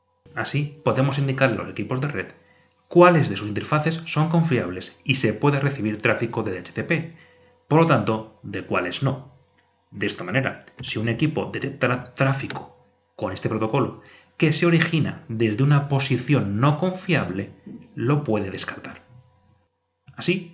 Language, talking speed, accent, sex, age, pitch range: Spanish, 145 wpm, Spanish, male, 30-49, 110-150 Hz